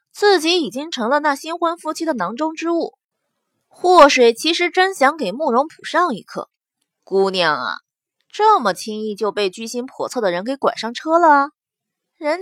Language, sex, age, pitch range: Chinese, female, 20-39, 230-330 Hz